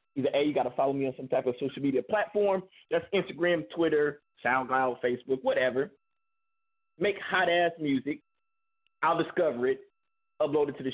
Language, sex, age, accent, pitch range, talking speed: English, male, 30-49, American, 135-210 Hz, 165 wpm